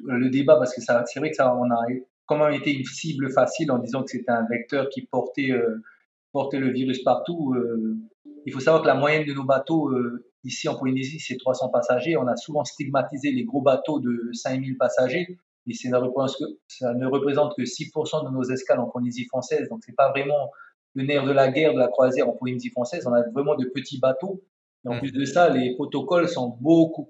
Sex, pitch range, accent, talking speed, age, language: male, 130-155 Hz, French, 225 wpm, 30-49, French